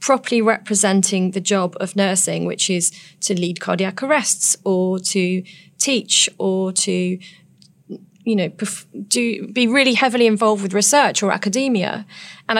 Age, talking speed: 30-49, 145 wpm